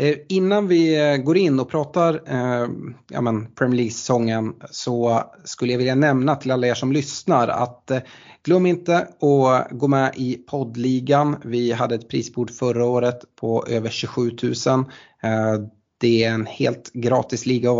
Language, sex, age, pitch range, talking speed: Swedish, male, 30-49, 115-135 Hz, 145 wpm